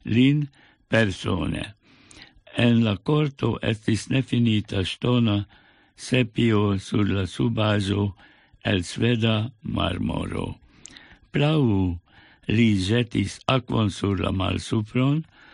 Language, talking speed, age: English, 90 wpm, 60-79